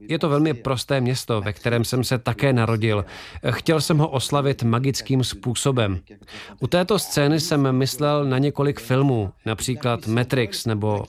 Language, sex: Czech, male